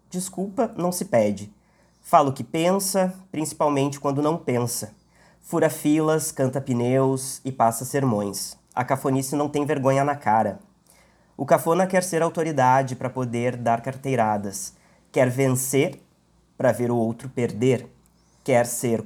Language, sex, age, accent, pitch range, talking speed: Portuguese, male, 20-39, Brazilian, 125-160 Hz, 140 wpm